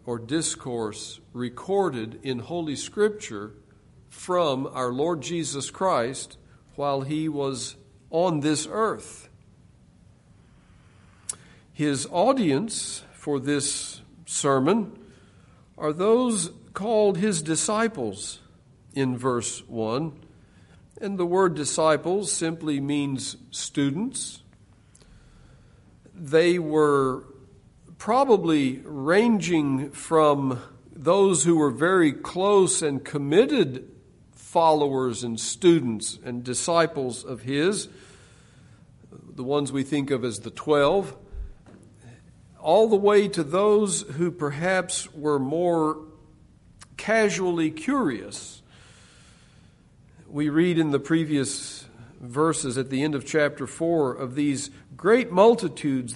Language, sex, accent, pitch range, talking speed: English, male, American, 130-170 Hz, 95 wpm